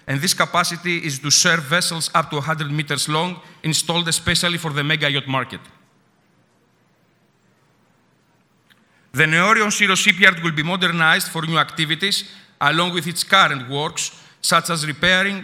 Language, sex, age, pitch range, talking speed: English, male, 40-59, 150-180 Hz, 140 wpm